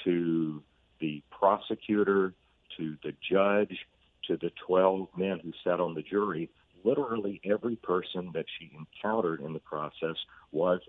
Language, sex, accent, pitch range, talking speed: English, male, American, 80-100 Hz, 140 wpm